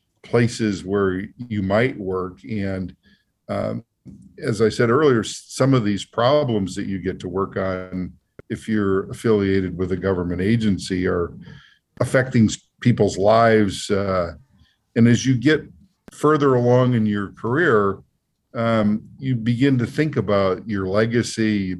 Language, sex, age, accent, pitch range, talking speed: English, male, 50-69, American, 95-115 Hz, 140 wpm